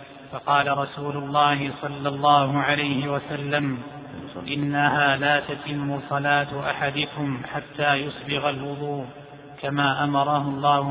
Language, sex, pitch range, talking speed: Arabic, male, 140-145 Hz, 100 wpm